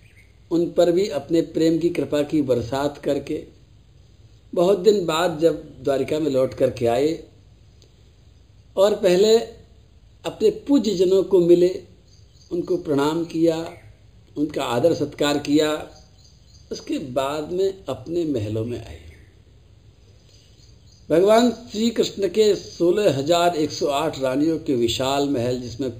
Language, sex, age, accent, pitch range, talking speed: Hindi, male, 60-79, native, 105-175 Hz, 115 wpm